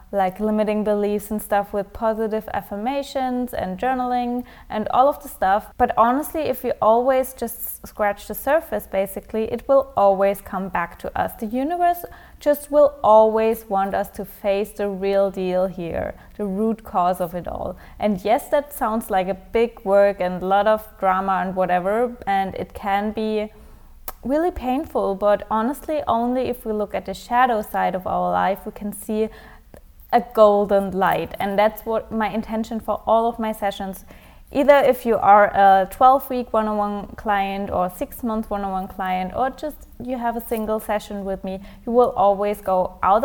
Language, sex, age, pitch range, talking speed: English, female, 20-39, 195-235 Hz, 175 wpm